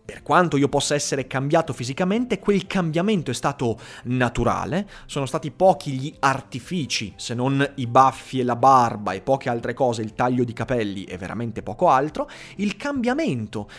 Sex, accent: male, native